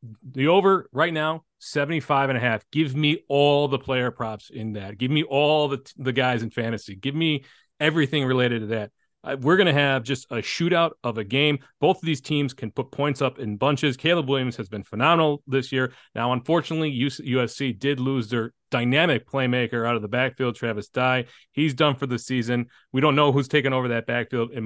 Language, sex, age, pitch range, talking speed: English, male, 30-49, 125-155 Hz, 215 wpm